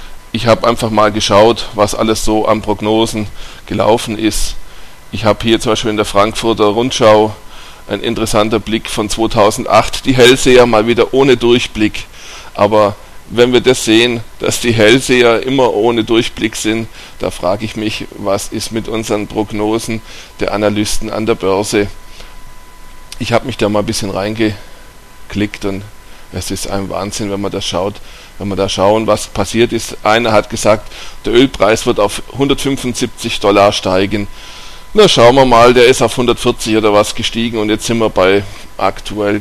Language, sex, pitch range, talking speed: German, male, 100-115 Hz, 165 wpm